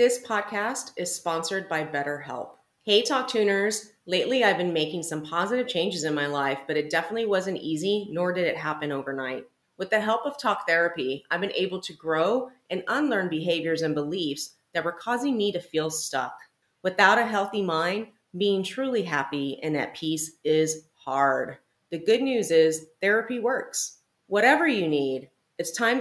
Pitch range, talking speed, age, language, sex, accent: 160-215 Hz, 175 wpm, 30-49, English, female, American